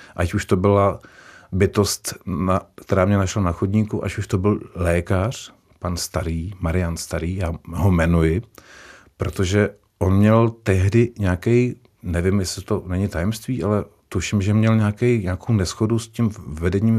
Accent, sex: native, male